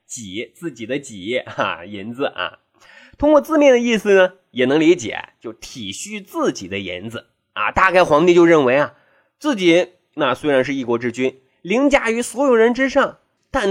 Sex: male